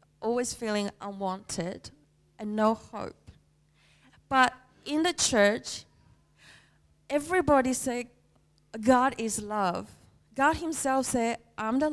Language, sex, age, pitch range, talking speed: English, female, 20-39, 190-240 Hz, 100 wpm